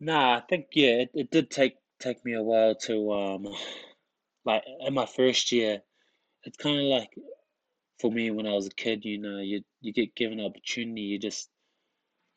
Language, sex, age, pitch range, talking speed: English, male, 20-39, 105-120 Hz, 200 wpm